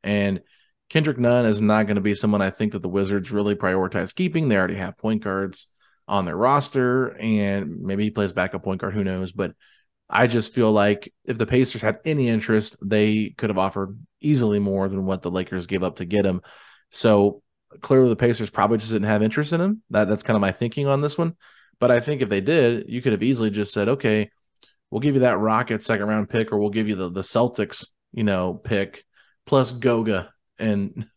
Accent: American